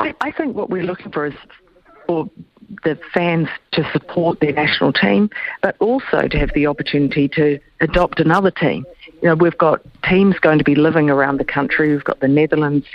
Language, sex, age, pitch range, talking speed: English, female, 50-69, 135-155 Hz, 190 wpm